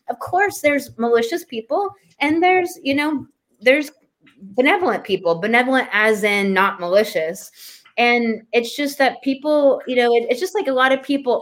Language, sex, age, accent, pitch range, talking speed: English, female, 20-39, American, 190-255 Hz, 165 wpm